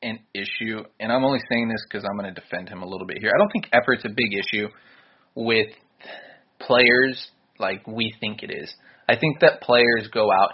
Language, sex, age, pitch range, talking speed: English, male, 20-39, 105-135 Hz, 210 wpm